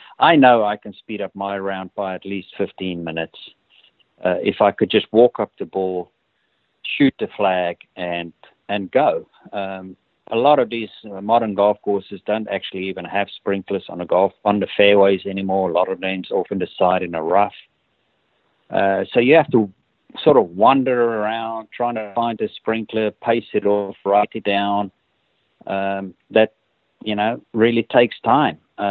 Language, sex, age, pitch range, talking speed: English, male, 50-69, 95-115 Hz, 180 wpm